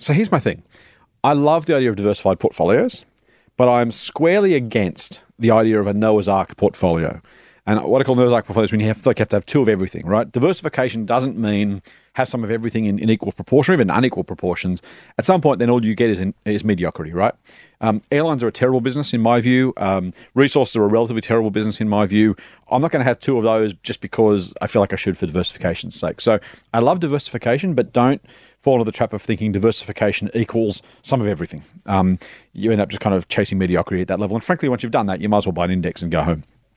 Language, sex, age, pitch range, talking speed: English, male, 40-59, 105-125 Hz, 240 wpm